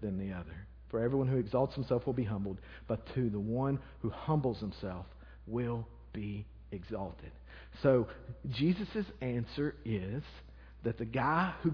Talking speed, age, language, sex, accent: 150 wpm, 40-59, English, male, American